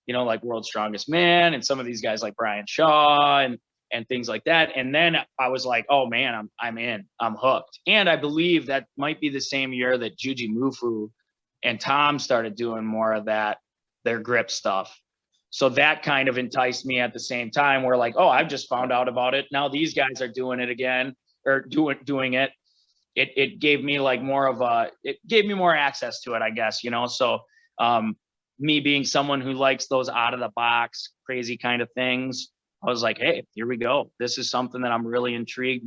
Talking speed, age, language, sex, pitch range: 220 wpm, 20-39, English, male, 115-140 Hz